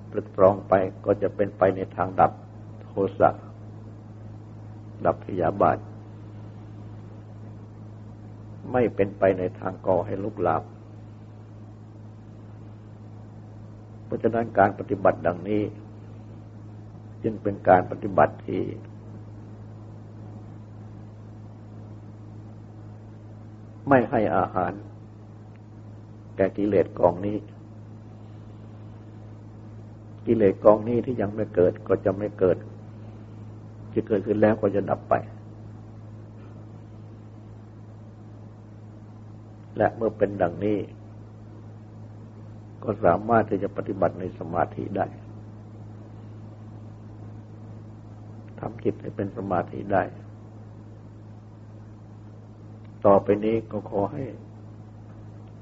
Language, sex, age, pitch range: Thai, male, 60-79, 105-110 Hz